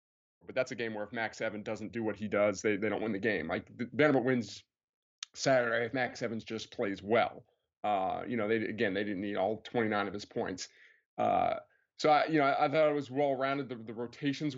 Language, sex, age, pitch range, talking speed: English, male, 30-49, 110-125 Hz, 230 wpm